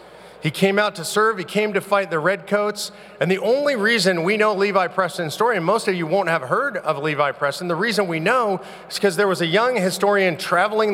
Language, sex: English, male